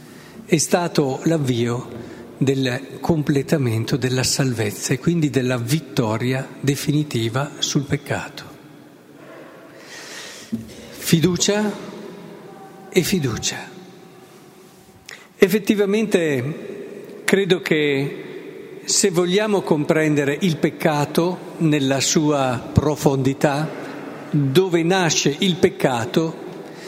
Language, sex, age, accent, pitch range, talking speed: Italian, male, 50-69, native, 155-195 Hz, 70 wpm